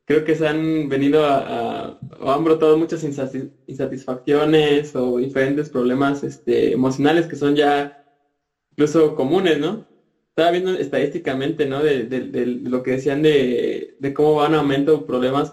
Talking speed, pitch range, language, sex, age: 155 wpm, 135-160 Hz, Spanish, male, 20-39